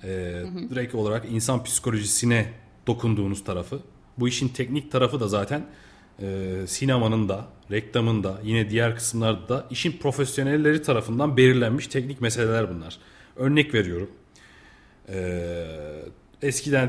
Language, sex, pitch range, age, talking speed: Turkish, male, 100-140 Hz, 40-59, 115 wpm